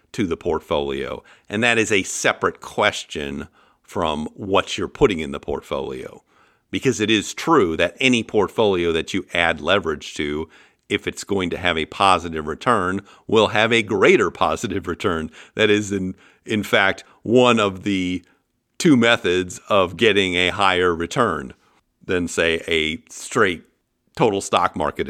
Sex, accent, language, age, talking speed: male, American, English, 50-69, 155 wpm